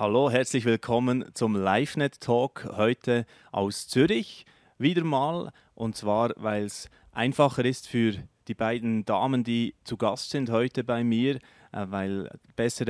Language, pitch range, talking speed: German, 105-130 Hz, 135 wpm